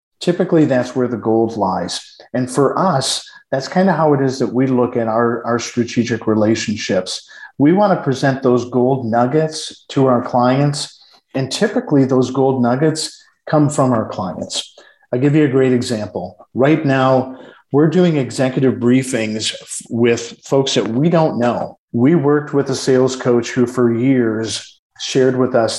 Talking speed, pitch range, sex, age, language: 170 wpm, 120-145 Hz, male, 50-69, English